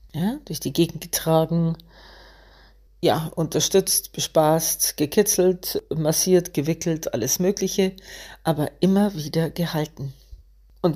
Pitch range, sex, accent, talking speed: 150-185 Hz, female, German, 90 wpm